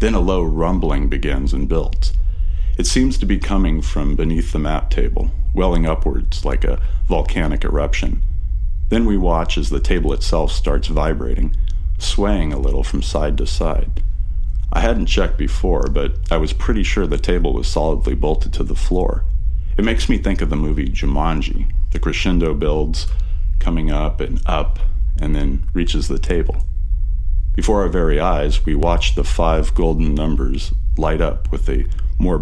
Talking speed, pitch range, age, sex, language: 170 wpm, 70-85 Hz, 40-59, male, English